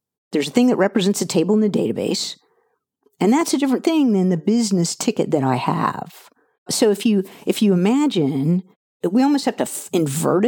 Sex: female